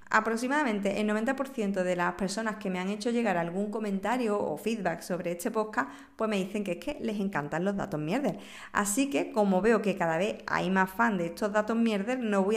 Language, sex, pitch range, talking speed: Spanish, female, 190-255 Hz, 215 wpm